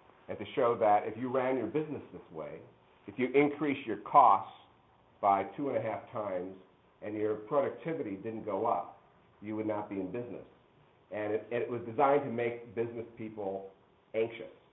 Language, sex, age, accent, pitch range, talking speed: English, male, 50-69, American, 95-125 Hz, 175 wpm